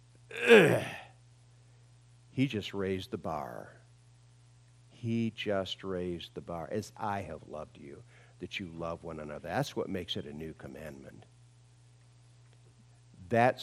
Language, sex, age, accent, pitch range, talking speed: English, male, 50-69, American, 120-130 Hz, 125 wpm